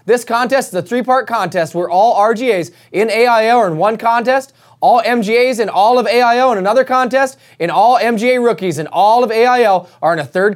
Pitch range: 185-245 Hz